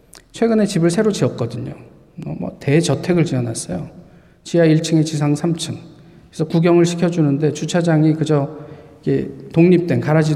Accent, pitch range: native, 135-165 Hz